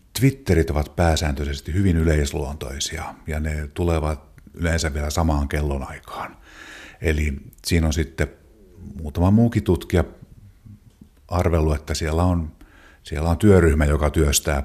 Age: 50-69